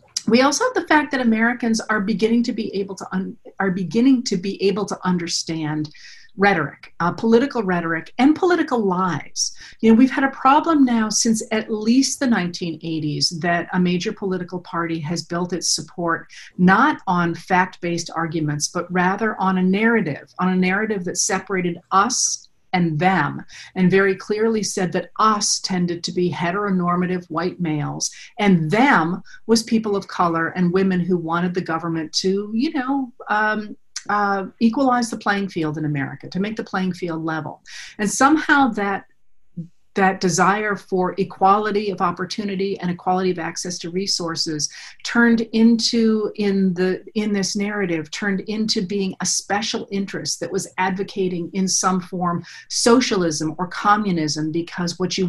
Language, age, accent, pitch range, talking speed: English, 50-69, American, 175-220 Hz, 160 wpm